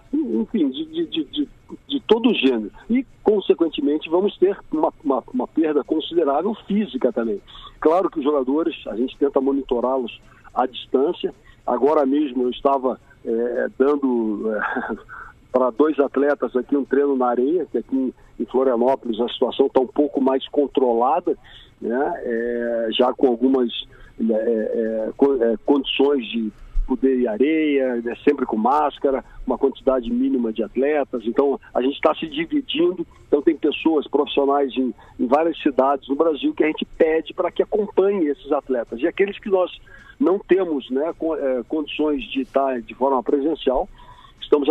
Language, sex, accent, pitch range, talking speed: Portuguese, male, Brazilian, 125-160 Hz, 140 wpm